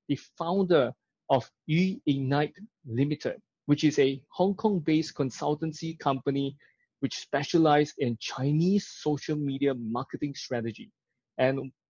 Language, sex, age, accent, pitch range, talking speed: English, male, 20-39, Malaysian, 135-165 Hz, 115 wpm